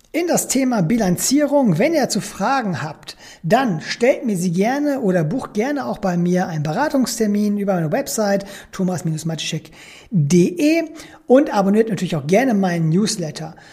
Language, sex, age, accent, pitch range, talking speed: German, male, 40-59, German, 180-240 Hz, 145 wpm